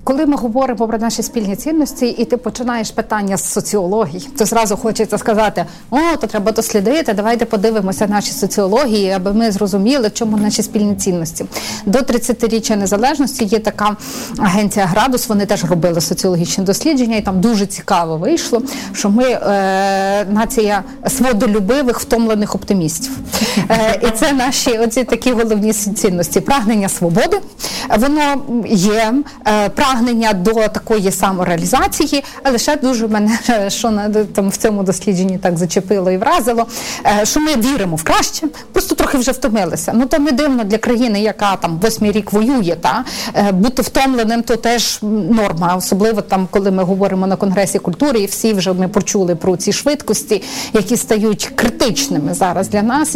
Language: Ukrainian